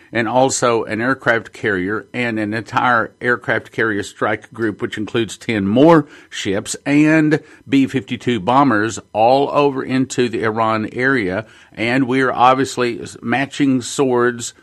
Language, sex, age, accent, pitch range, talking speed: English, male, 50-69, American, 110-135 Hz, 135 wpm